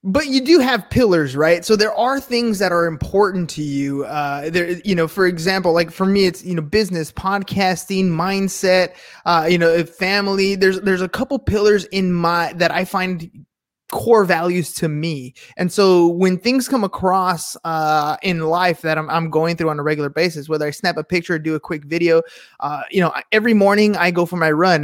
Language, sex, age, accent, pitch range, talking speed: English, male, 20-39, American, 165-210 Hz, 210 wpm